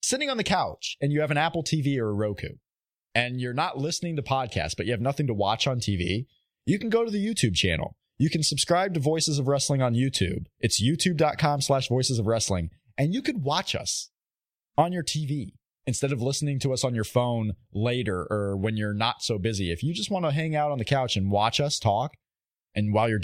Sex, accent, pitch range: male, American, 105-150 Hz